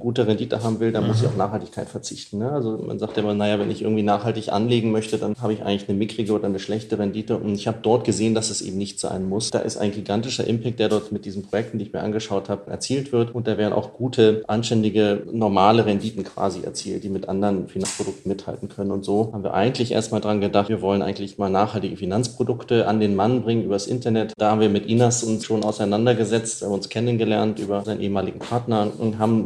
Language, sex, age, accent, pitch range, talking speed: German, male, 30-49, German, 100-115 Hz, 235 wpm